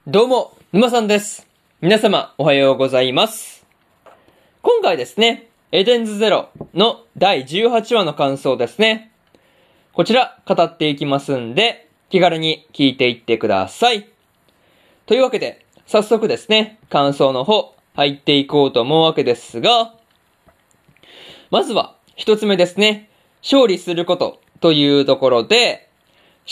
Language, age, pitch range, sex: Japanese, 20-39, 140-220 Hz, male